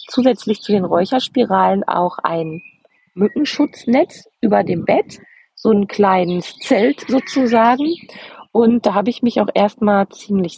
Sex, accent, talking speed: female, German, 130 wpm